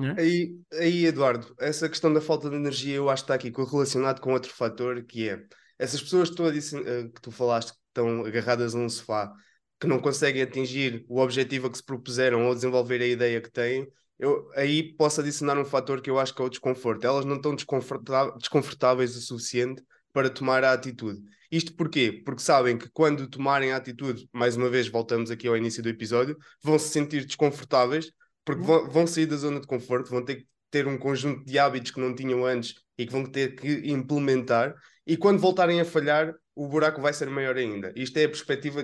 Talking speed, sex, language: 205 wpm, male, Portuguese